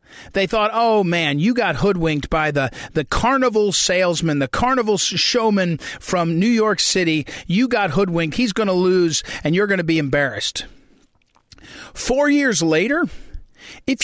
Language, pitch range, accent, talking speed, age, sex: English, 170-250 Hz, American, 155 wpm, 40-59, male